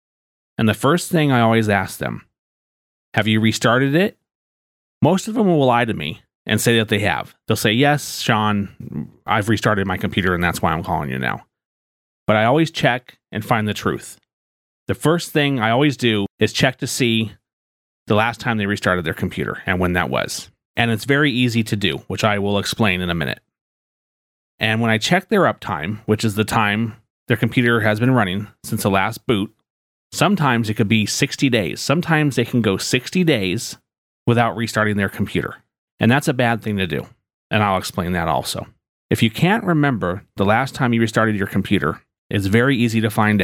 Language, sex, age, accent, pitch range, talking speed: English, male, 30-49, American, 100-130 Hz, 200 wpm